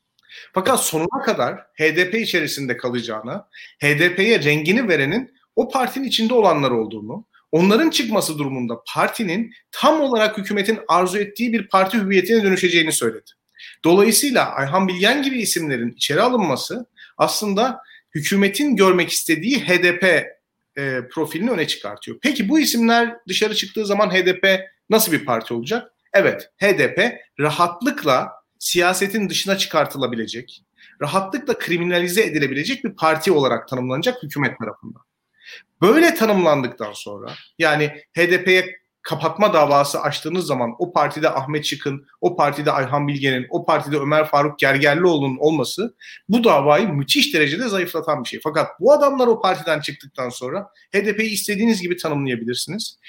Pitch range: 145-210 Hz